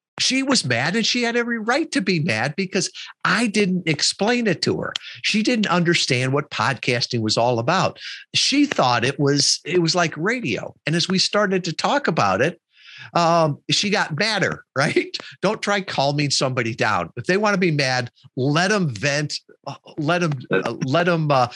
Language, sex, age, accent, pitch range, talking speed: English, male, 50-69, American, 135-190 Hz, 185 wpm